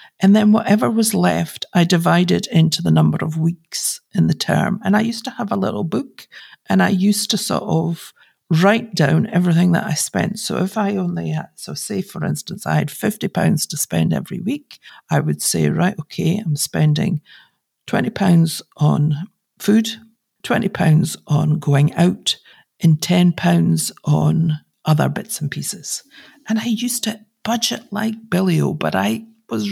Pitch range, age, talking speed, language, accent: 165-220 Hz, 50-69, 175 wpm, English, British